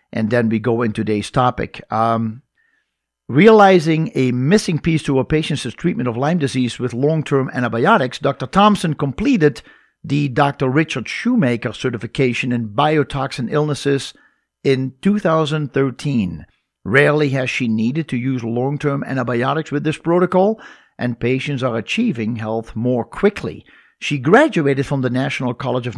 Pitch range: 120-155 Hz